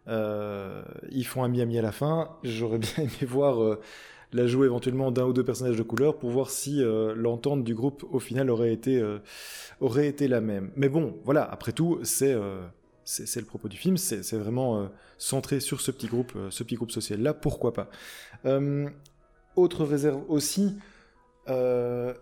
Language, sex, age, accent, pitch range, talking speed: French, male, 20-39, French, 115-145 Hz, 190 wpm